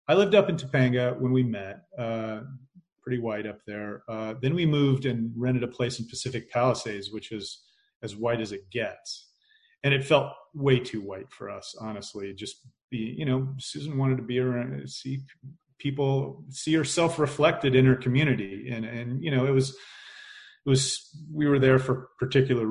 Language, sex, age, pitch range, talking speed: English, male, 30-49, 120-155 Hz, 185 wpm